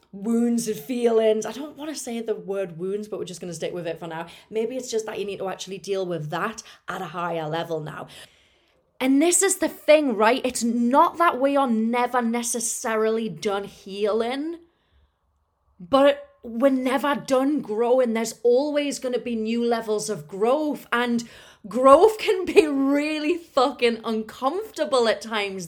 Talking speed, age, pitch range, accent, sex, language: 175 wpm, 30-49, 210-260 Hz, British, female, English